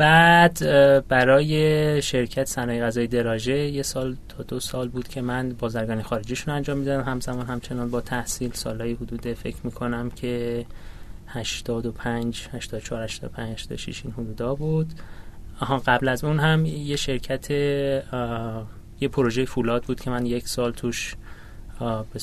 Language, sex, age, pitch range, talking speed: Persian, male, 20-39, 115-135 Hz, 150 wpm